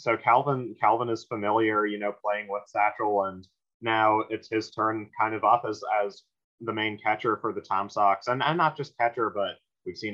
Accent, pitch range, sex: American, 100-115 Hz, male